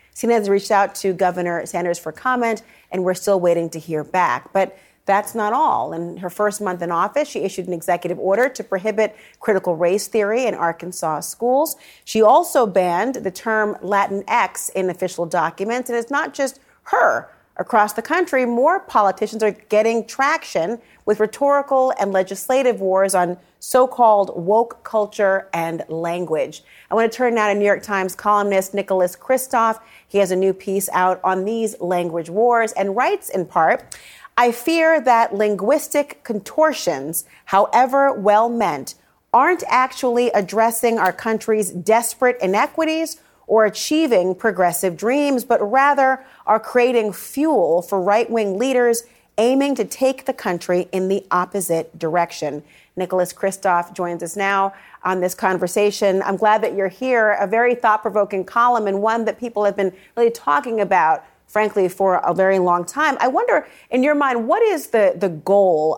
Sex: female